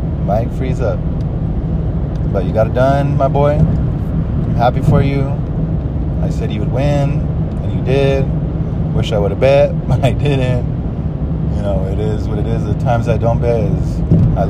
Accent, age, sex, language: American, 30-49, male, English